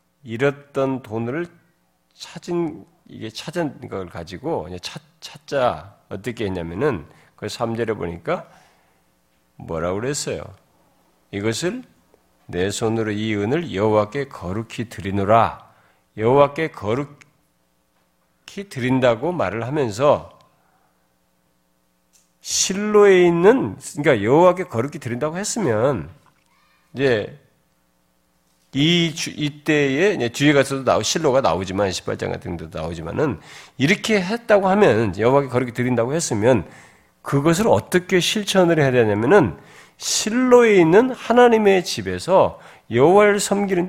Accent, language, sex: native, Korean, male